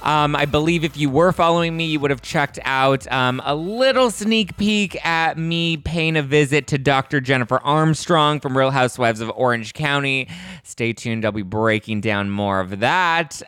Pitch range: 120-160 Hz